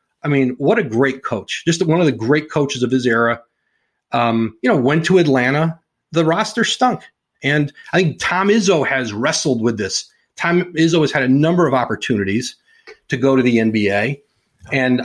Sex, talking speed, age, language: male, 190 wpm, 40-59, English